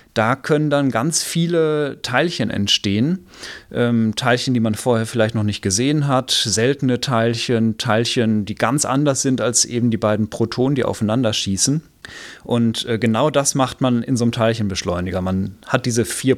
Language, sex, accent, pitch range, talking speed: German, male, German, 115-150 Hz, 165 wpm